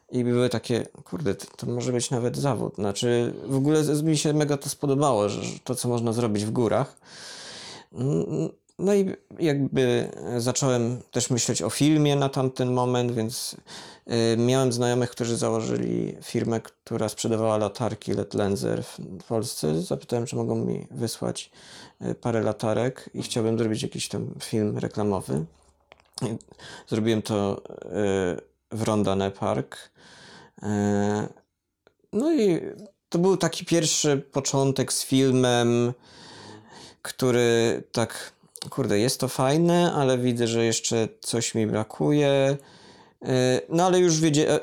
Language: Polish